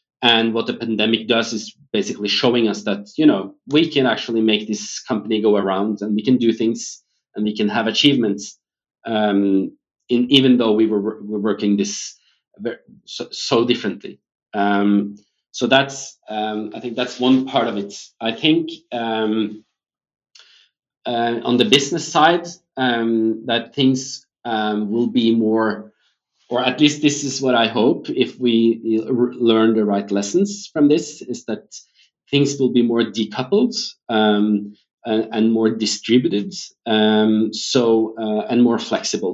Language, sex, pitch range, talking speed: English, male, 105-130 Hz, 155 wpm